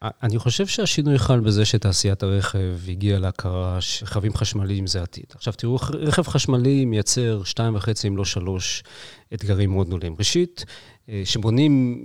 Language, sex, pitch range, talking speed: Hebrew, male, 110-155 Hz, 140 wpm